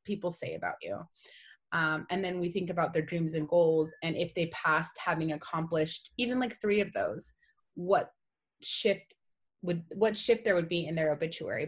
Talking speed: 185 wpm